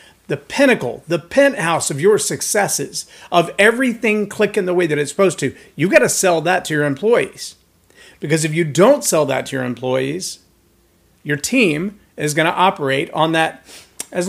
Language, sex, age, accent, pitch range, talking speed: English, male, 40-59, American, 140-195 Hz, 175 wpm